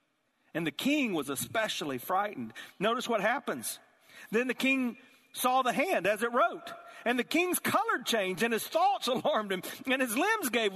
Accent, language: American, English